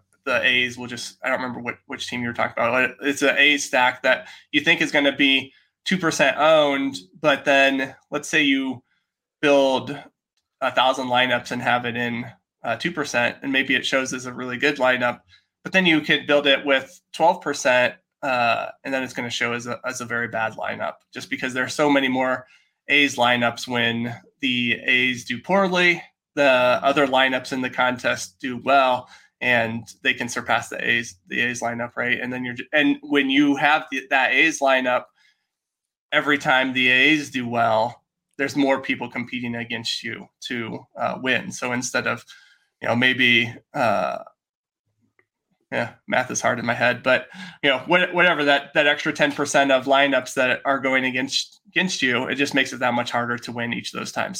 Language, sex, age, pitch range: English, male, 20-39, 125-140 Hz